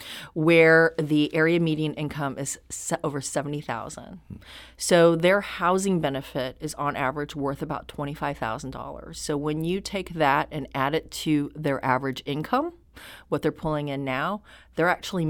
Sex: female